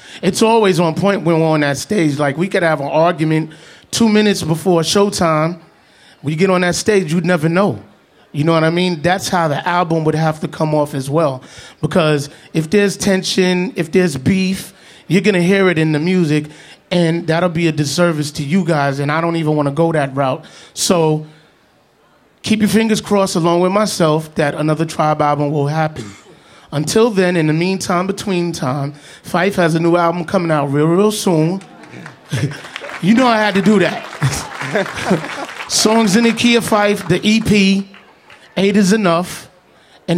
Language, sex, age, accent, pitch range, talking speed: English, male, 30-49, American, 155-185 Hz, 185 wpm